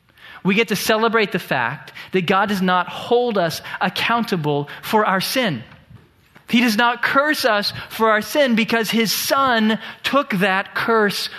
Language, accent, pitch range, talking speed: English, American, 165-215 Hz, 160 wpm